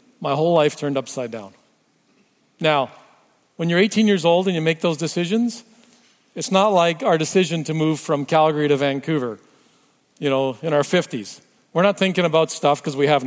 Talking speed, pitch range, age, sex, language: 185 wpm, 145-195 Hz, 50-69, male, English